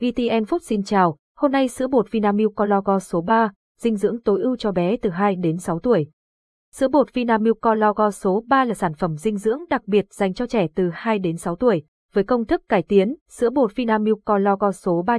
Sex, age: female, 20-39